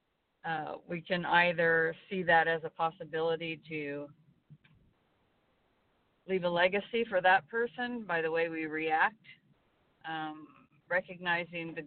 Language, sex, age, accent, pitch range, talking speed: English, female, 40-59, American, 155-180 Hz, 120 wpm